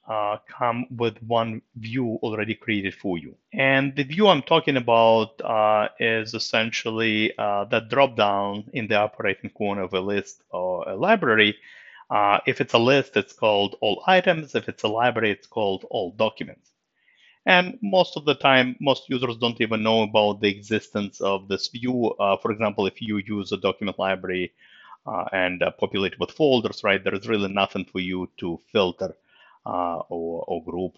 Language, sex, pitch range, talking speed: English, male, 95-125 Hz, 180 wpm